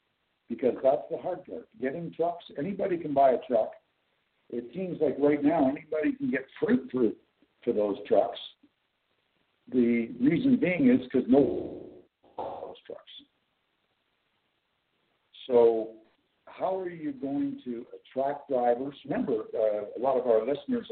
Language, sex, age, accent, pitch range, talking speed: English, male, 60-79, American, 110-145 Hz, 140 wpm